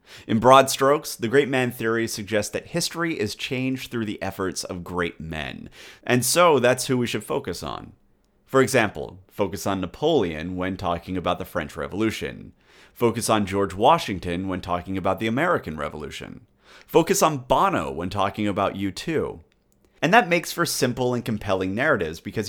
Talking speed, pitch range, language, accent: 170 wpm, 90-125 Hz, English, American